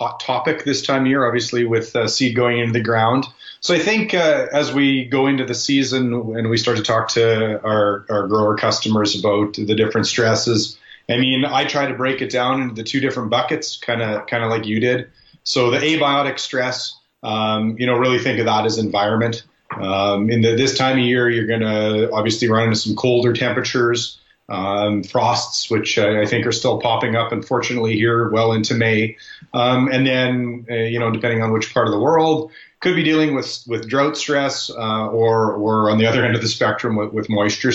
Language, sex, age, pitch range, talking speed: English, male, 30-49, 110-130 Hz, 210 wpm